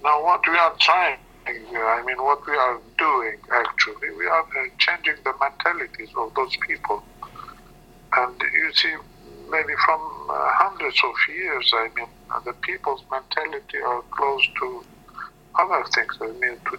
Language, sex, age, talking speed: English, male, 50-69, 145 wpm